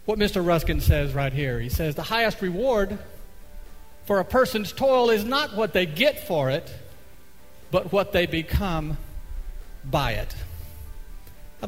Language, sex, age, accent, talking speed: English, male, 50-69, American, 150 wpm